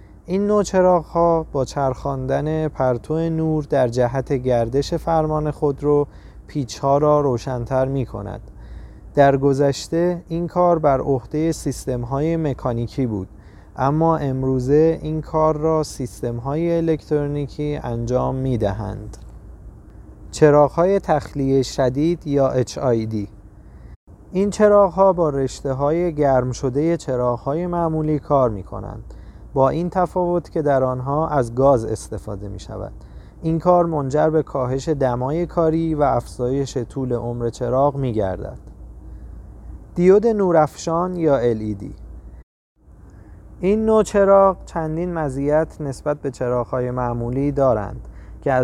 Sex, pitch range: male, 120-155 Hz